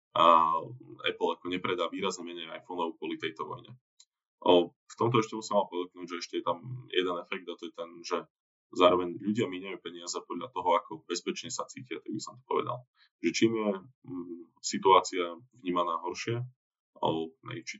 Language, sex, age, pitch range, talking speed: Slovak, male, 20-39, 85-115 Hz, 175 wpm